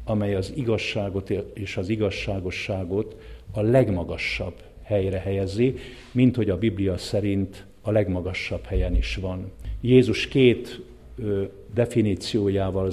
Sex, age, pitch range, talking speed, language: male, 50-69, 95-115 Hz, 105 wpm, English